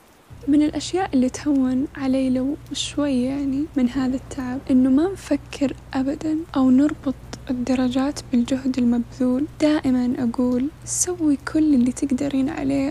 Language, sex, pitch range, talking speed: Arabic, female, 255-285 Hz, 125 wpm